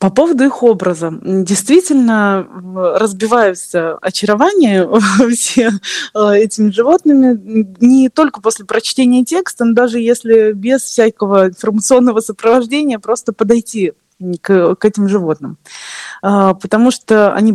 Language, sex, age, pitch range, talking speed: Russian, female, 20-39, 200-265 Hz, 115 wpm